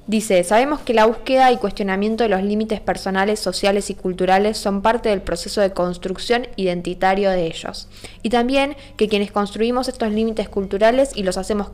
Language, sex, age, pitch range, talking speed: Spanish, female, 10-29, 185-220 Hz, 175 wpm